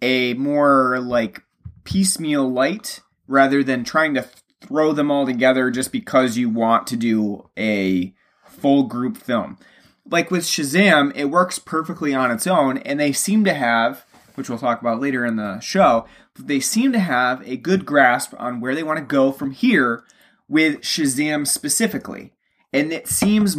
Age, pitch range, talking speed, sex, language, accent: 30-49, 130-175 Hz, 170 wpm, male, English, American